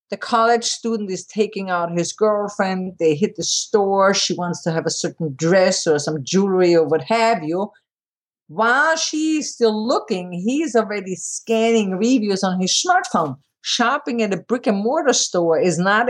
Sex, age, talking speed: female, 50-69, 165 wpm